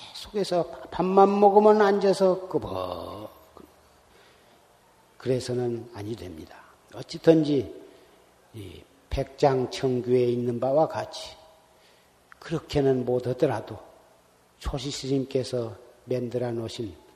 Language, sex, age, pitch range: Korean, male, 40-59, 120-195 Hz